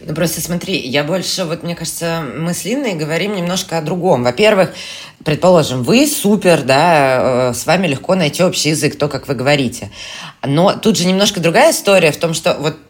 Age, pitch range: 20-39, 140-180 Hz